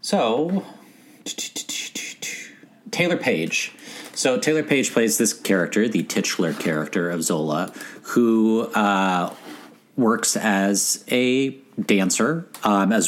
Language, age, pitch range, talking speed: English, 40-59, 90-120 Hz, 90 wpm